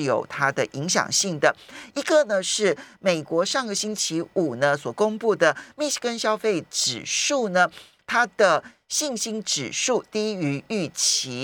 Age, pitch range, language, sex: 50-69, 155-230 Hz, Chinese, male